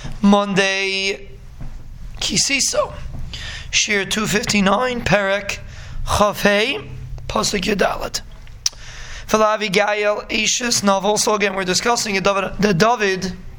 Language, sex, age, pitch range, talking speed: English, male, 20-39, 190-220 Hz, 80 wpm